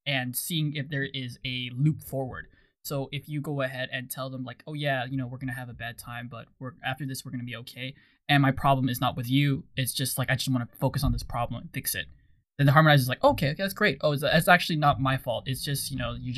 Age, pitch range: 20-39, 130-160 Hz